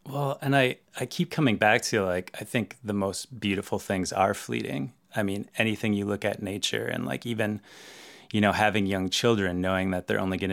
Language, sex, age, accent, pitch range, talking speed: English, male, 30-49, American, 95-110 Hz, 210 wpm